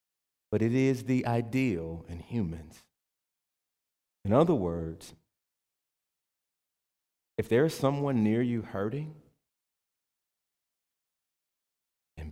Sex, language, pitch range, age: male, English, 85-120 Hz, 40-59